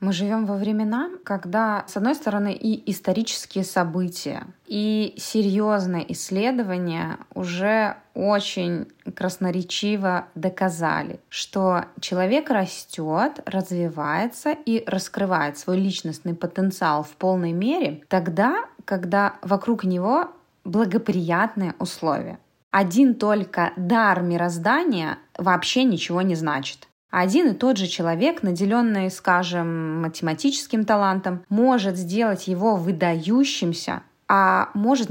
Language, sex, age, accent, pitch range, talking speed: Russian, female, 20-39, native, 175-220 Hz, 100 wpm